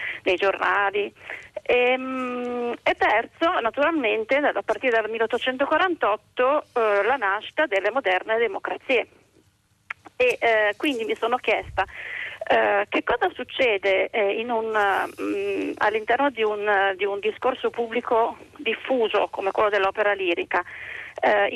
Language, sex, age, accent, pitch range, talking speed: Italian, female, 30-49, native, 200-255 Hz, 115 wpm